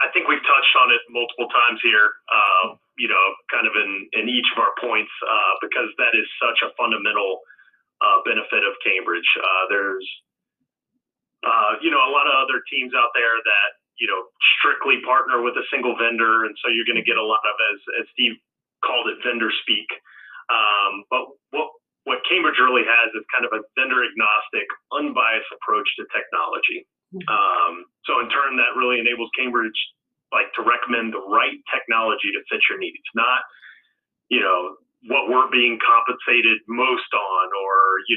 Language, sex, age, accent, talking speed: English, male, 30-49, American, 180 wpm